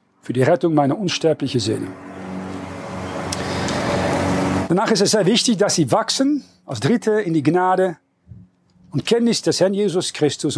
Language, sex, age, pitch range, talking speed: German, male, 40-59, 140-195 Hz, 140 wpm